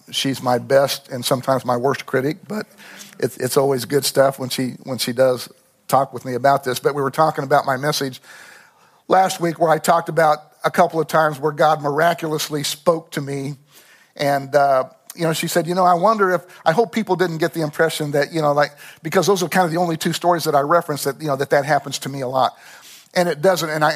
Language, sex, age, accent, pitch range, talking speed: English, male, 50-69, American, 135-165 Hz, 240 wpm